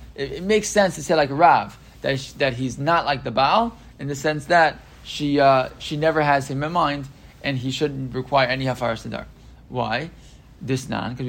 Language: English